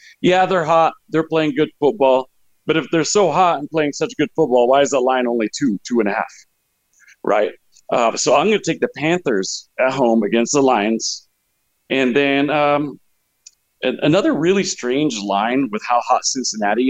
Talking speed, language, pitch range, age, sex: 185 wpm, English, 120-155 Hz, 40-59, male